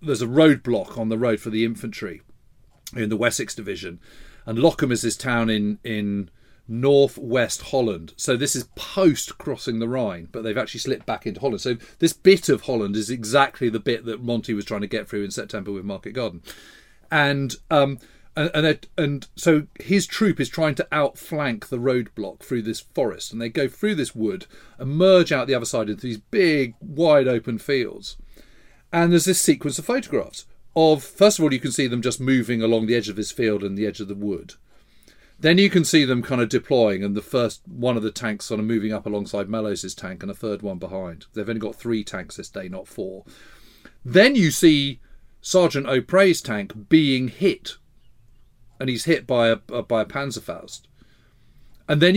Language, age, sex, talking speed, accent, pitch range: English, 40-59, male, 200 wpm, British, 115-160 Hz